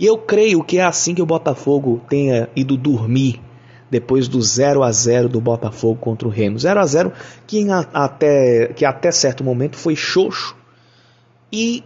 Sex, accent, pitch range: male, Brazilian, 130-185 Hz